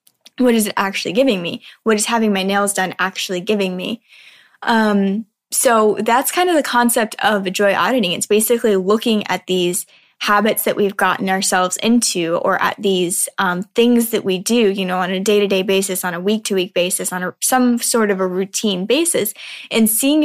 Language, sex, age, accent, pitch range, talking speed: English, female, 10-29, American, 190-230 Hz, 195 wpm